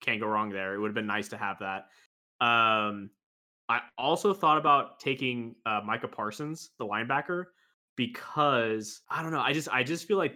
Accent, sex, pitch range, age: American, male, 110-130 Hz, 20-39